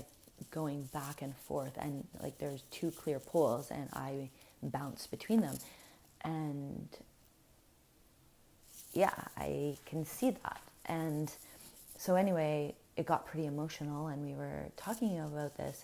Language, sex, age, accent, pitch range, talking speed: English, female, 30-49, American, 145-170 Hz, 130 wpm